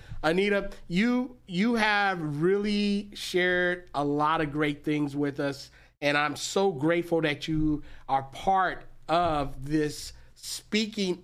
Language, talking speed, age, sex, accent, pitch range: English, 130 wpm, 40-59, male, American, 145-180 Hz